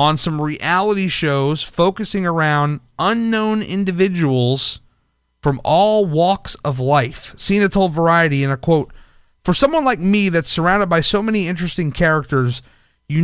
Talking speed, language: 140 wpm, English